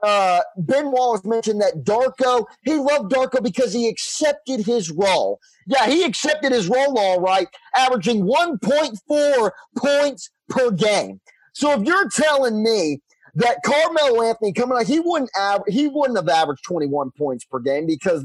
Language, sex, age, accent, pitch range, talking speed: English, male, 40-59, American, 185-270 Hz, 150 wpm